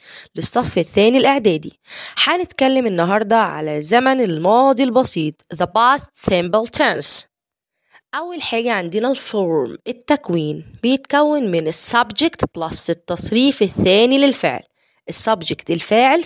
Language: Arabic